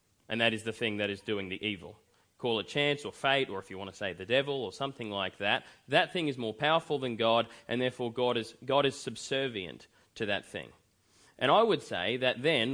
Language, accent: English, Australian